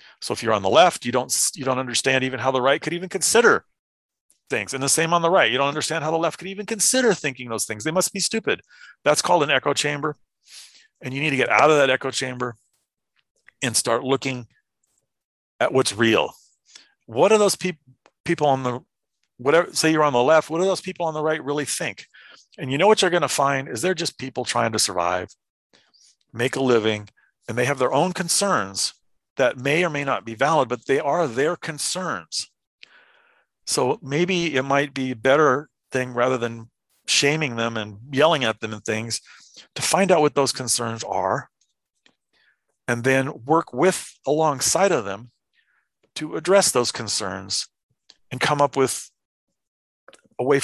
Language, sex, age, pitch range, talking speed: English, male, 40-59, 120-160 Hz, 190 wpm